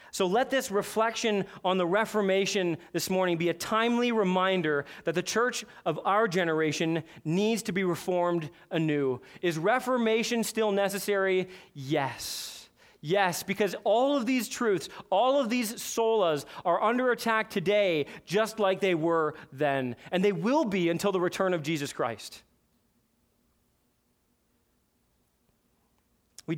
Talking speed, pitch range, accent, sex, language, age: 135 wpm, 180-230 Hz, American, male, English, 30-49